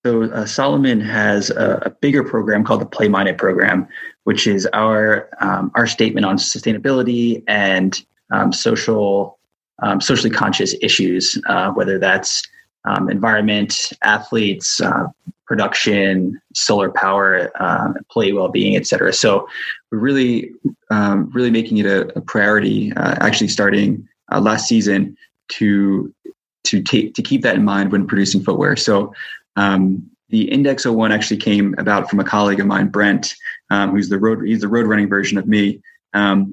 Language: English